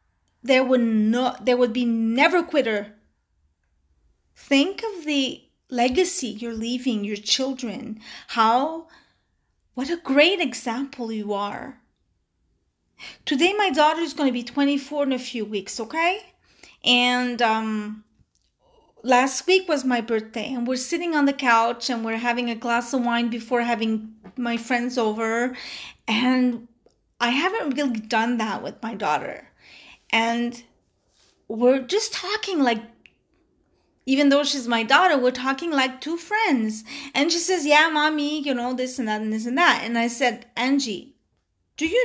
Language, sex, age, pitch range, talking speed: English, female, 30-49, 230-295 Hz, 150 wpm